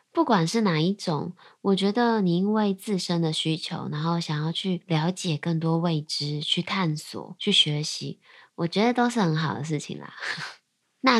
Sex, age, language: female, 20-39, Chinese